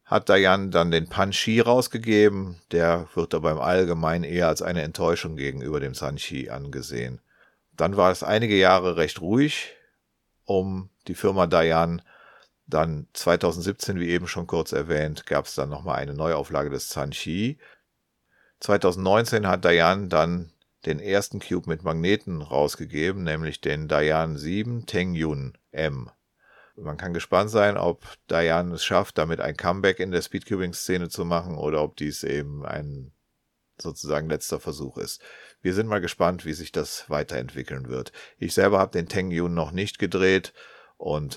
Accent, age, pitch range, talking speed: German, 50-69, 75-95 Hz, 150 wpm